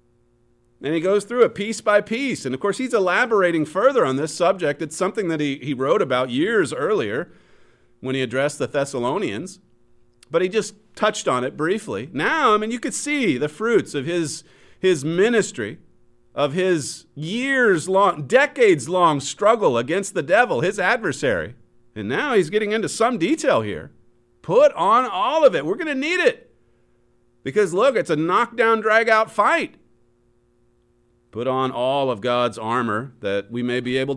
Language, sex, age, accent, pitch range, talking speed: English, male, 40-59, American, 120-180 Hz, 170 wpm